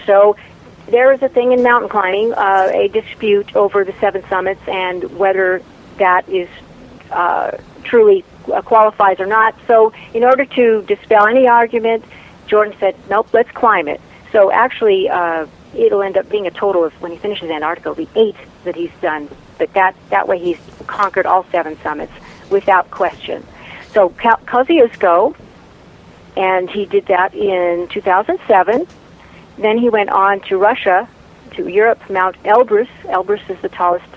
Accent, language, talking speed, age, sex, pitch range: American, English, 160 wpm, 50-69, female, 175-215 Hz